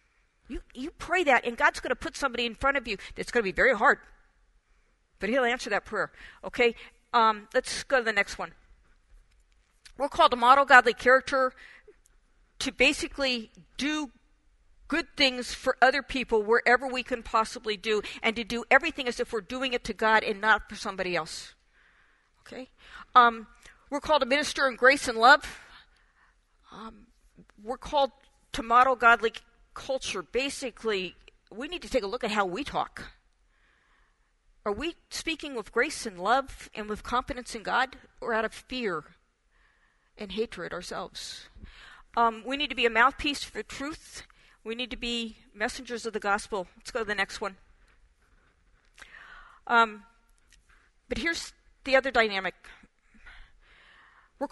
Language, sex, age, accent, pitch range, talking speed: English, female, 50-69, American, 220-265 Hz, 160 wpm